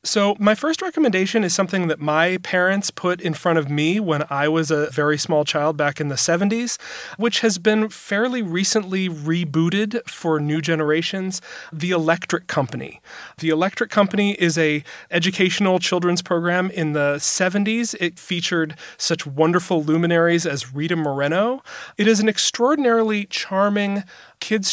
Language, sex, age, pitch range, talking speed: English, male, 30-49, 155-190 Hz, 150 wpm